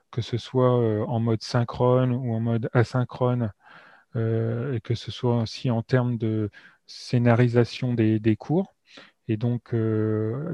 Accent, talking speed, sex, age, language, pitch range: French, 150 wpm, male, 30-49, French, 115-130 Hz